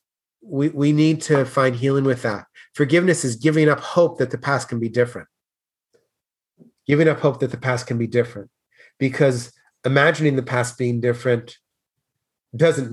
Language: English